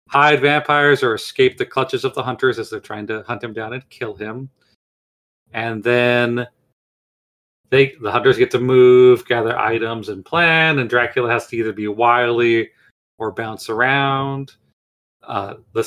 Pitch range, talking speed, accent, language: 105-130 Hz, 165 wpm, American, English